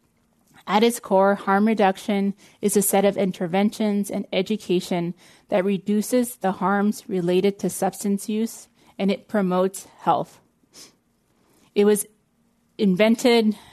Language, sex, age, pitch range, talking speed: English, female, 20-39, 190-215 Hz, 120 wpm